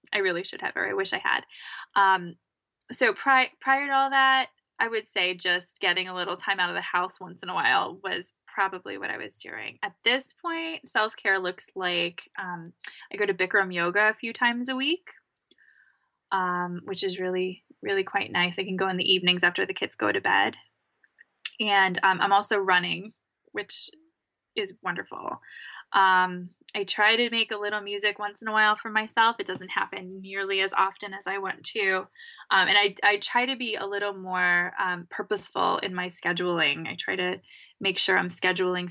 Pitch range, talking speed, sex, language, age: 185-220 Hz, 195 wpm, female, English, 10-29